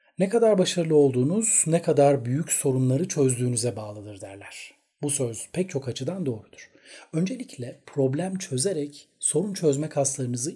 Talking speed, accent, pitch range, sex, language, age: 130 wpm, native, 125-165 Hz, male, Turkish, 40-59